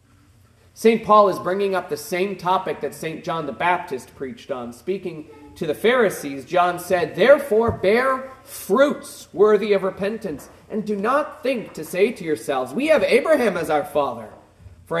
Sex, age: male, 30-49